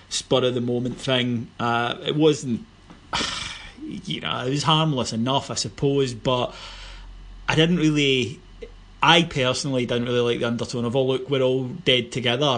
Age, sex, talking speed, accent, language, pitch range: 30-49, male, 155 wpm, British, English, 120-140 Hz